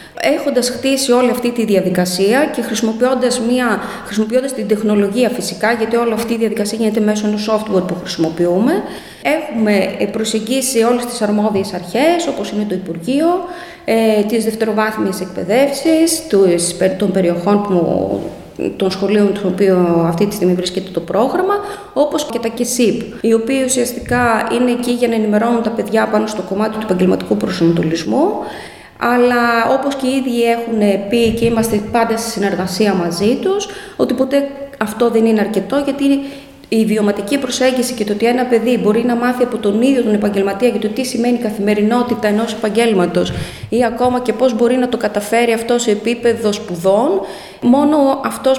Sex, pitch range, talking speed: female, 210-250 Hz, 155 wpm